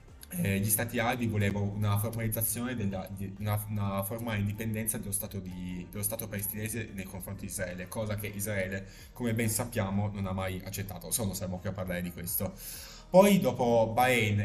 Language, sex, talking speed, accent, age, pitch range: Italian, male, 180 wpm, native, 20-39, 100-115 Hz